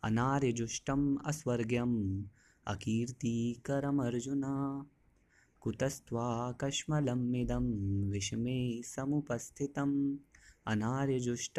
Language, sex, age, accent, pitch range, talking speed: Hindi, male, 20-39, native, 110-135 Hz, 50 wpm